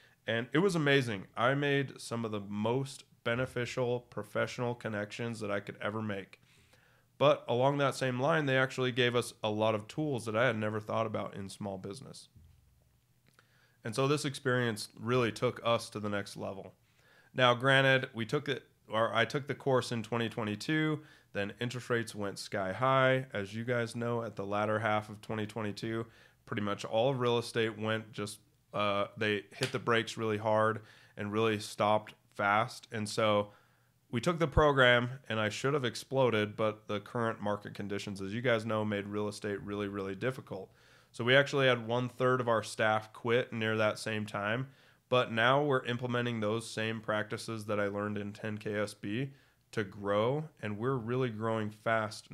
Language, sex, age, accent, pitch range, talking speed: English, male, 20-39, American, 105-130 Hz, 180 wpm